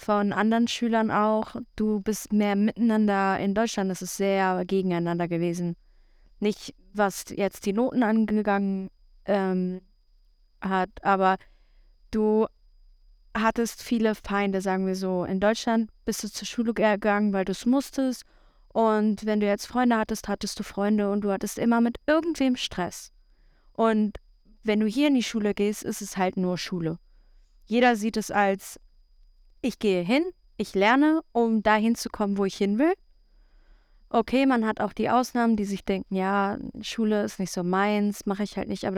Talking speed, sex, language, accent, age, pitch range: 170 wpm, female, German, German, 20-39, 195-225 Hz